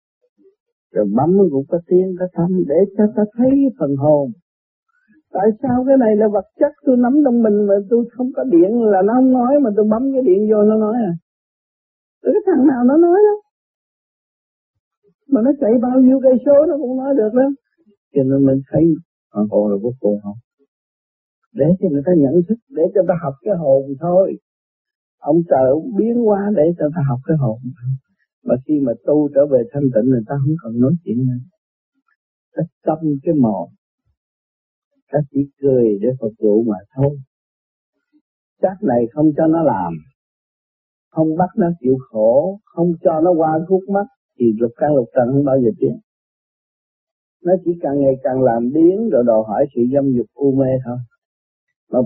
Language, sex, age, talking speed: Vietnamese, male, 50-69, 185 wpm